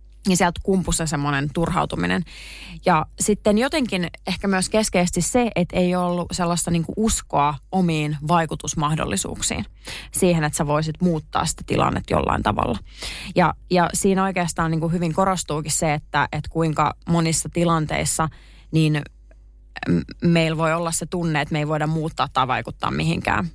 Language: Finnish